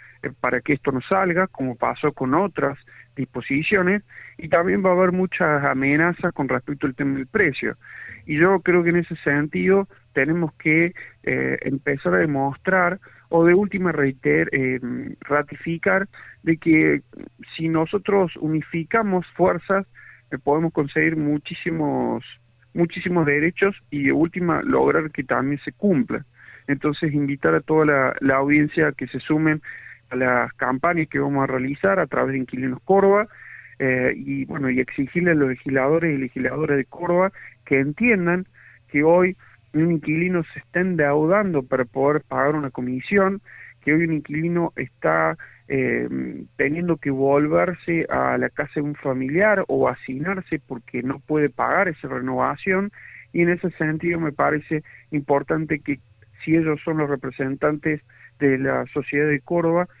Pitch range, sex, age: 135-175 Hz, male, 40-59